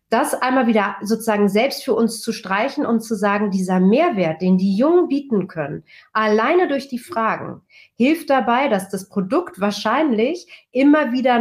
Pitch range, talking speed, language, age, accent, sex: 210-255 Hz, 165 wpm, German, 40-59, German, female